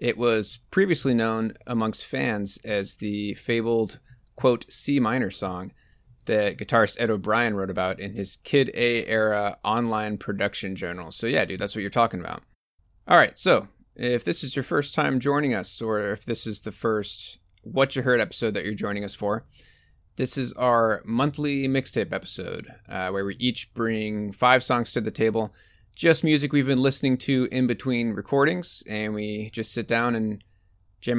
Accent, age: American, 30-49